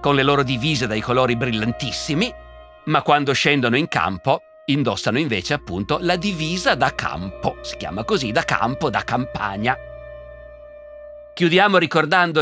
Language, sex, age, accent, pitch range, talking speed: Italian, male, 50-69, native, 115-160 Hz, 135 wpm